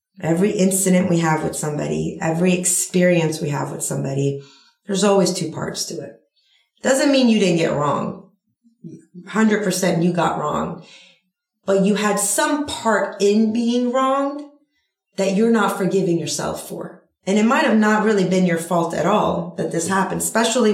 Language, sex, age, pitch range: English, female, 30-49, 170-210 Hz